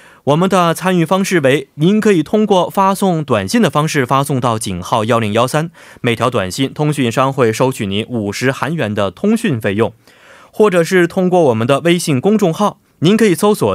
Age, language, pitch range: 20-39, Korean, 120-170 Hz